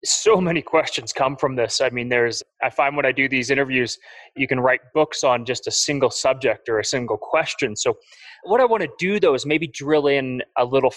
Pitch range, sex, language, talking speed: 130-180 Hz, male, English, 230 wpm